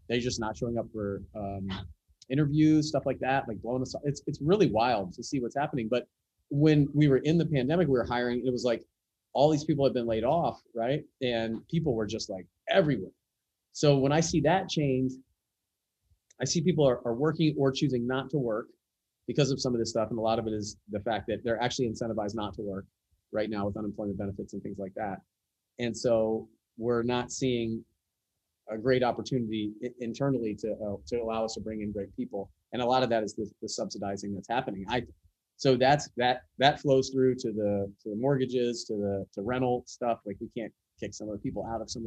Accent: American